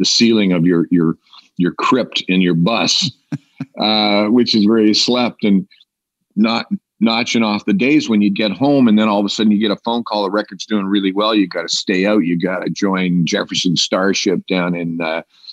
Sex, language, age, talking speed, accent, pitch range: male, English, 50-69, 215 wpm, American, 90-115 Hz